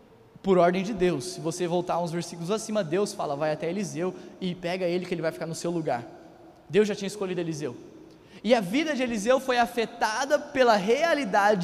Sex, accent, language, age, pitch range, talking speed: male, Brazilian, Portuguese, 20-39, 195-240 Hz, 200 wpm